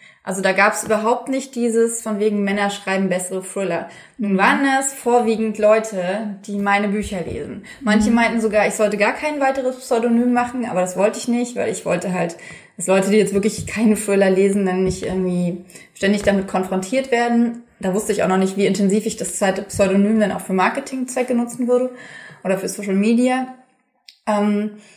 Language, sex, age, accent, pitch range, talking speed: German, female, 20-39, German, 195-235 Hz, 190 wpm